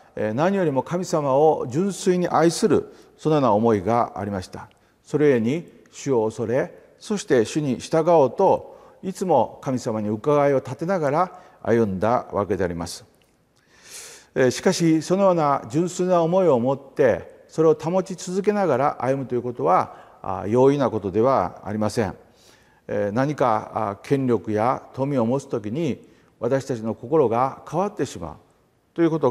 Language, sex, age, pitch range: Japanese, male, 40-59, 115-170 Hz